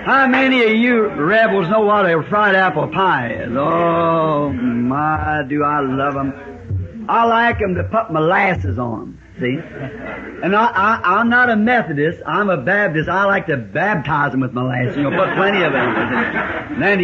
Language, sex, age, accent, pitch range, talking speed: English, male, 60-79, American, 135-220 Hz, 190 wpm